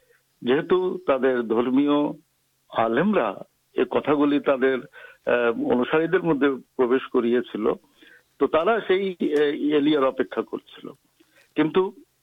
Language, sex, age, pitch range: Urdu, male, 60-79, 120-185 Hz